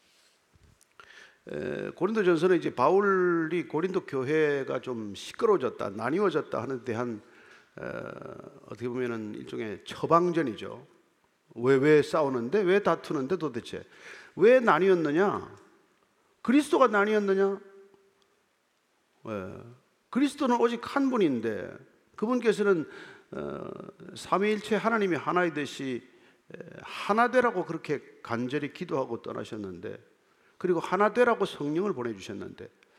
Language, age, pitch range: Korean, 50-69, 145-215 Hz